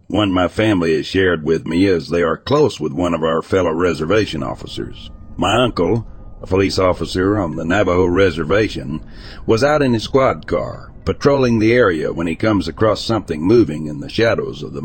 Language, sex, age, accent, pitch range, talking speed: English, male, 60-79, American, 85-115 Hz, 190 wpm